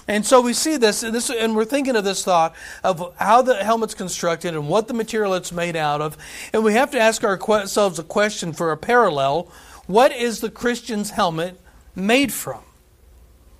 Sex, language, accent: male, English, American